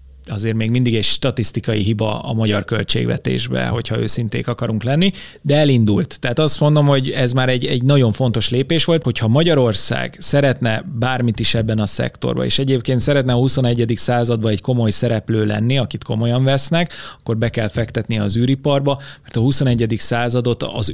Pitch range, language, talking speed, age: 115-145 Hz, Hungarian, 170 wpm, 30-49